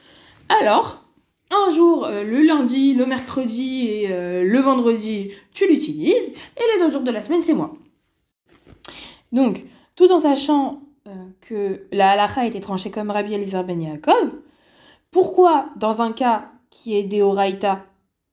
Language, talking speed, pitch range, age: French, 150 wpm, 210-305 Hz, 20-39